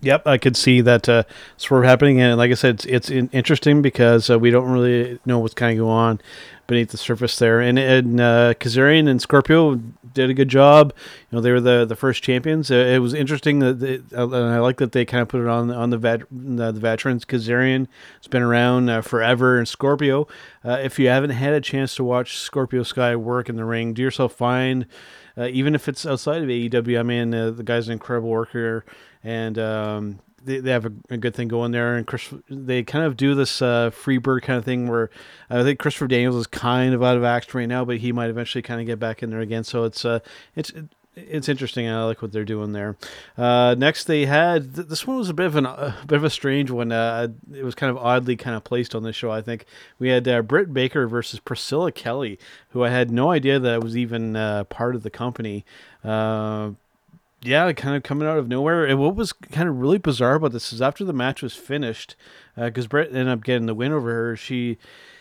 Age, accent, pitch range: 30-49, American, 120-135 Hz